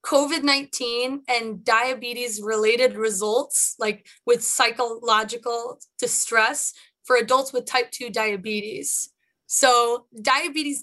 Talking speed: 95 wpm